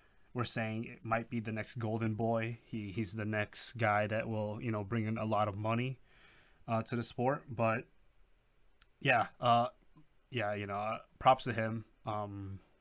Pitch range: 105-120 Hz